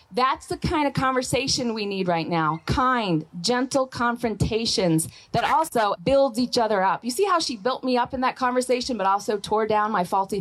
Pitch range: 175-260 Hz